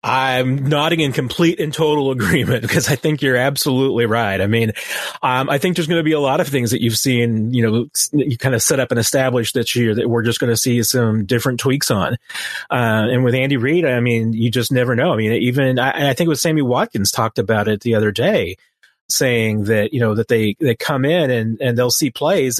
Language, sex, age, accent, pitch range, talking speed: English, male, 30-49, American, 115-150 Hz, 245 wpm